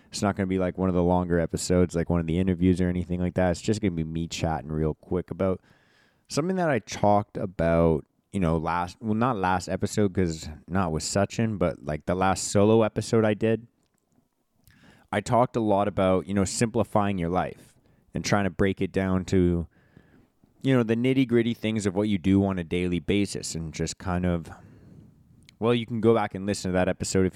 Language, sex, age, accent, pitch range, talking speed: English, male, 20-39, American, 90-110 Hz, 220 wpm